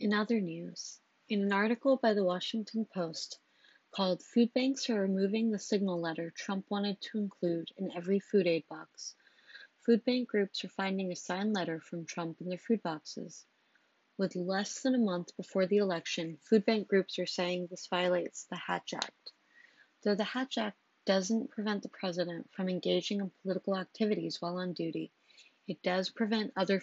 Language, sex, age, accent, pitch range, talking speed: English, female, 30-49, American, 180-215 Hz, 175 wpm